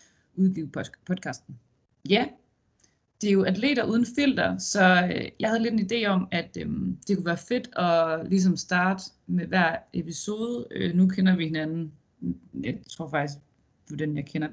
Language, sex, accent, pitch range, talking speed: Danish, female, native, 160-195 Hz, 155 wpm